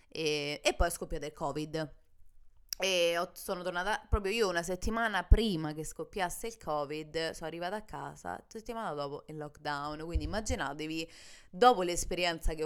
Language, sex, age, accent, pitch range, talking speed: Italian, female, 20-39, native, 150-185 Hz, 150 wpm